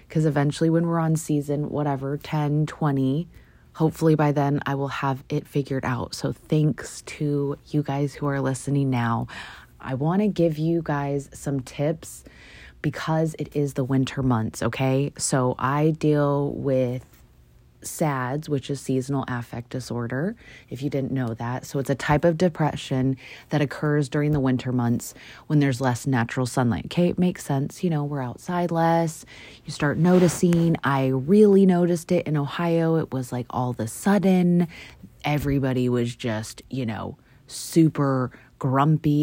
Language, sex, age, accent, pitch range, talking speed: English, female, 20-39, American, 130-155 Hz, 160 wpm